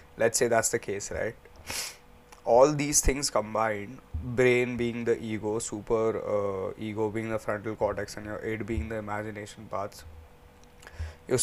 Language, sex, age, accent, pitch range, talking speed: English, male, 20-39, Indian, 95-115 Hz, 150 wpm